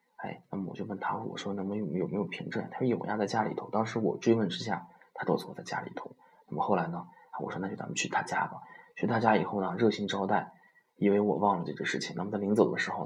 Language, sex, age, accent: Chinese, male, 20-39, native